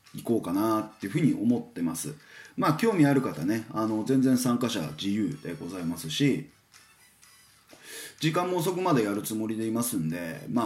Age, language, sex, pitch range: 20-39, Japanese, male, 110-175 Hz